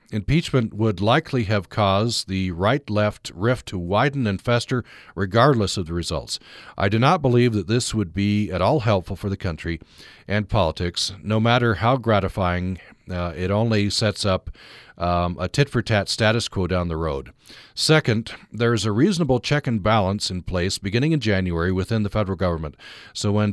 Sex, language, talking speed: male, English, 175 wpm